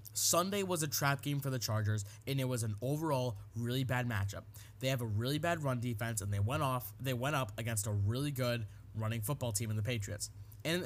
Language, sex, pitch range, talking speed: English, male, 105-145 Hz, 225 wpm